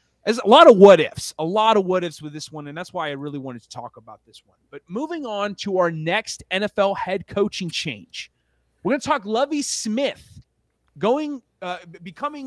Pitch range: 155-220 Hz